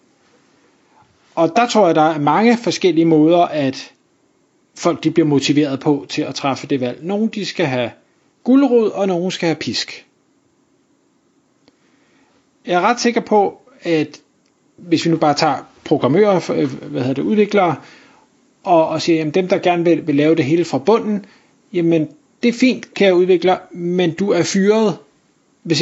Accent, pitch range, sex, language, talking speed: native, 160-220 Hz, male, Danish, 160 wpm